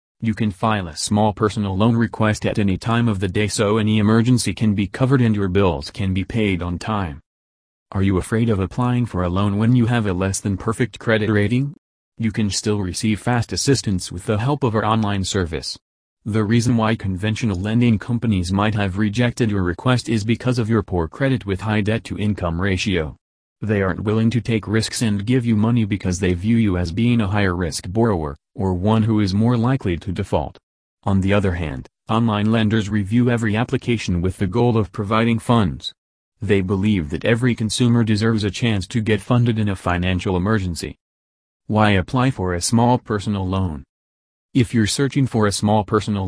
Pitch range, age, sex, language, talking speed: 95-115 Hz, 30-49, male, English, 200 wpm